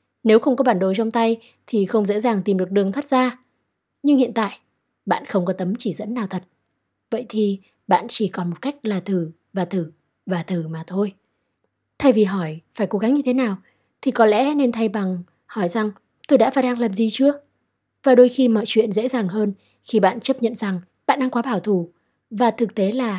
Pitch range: 185-235 Hz